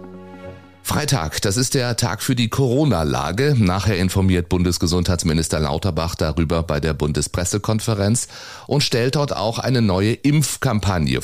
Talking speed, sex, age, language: 125 wpm, male, 30-49, German